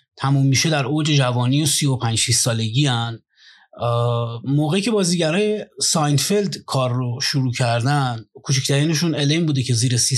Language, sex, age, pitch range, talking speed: Persian, male, 30-49, 125-175 Hz, 135 wpm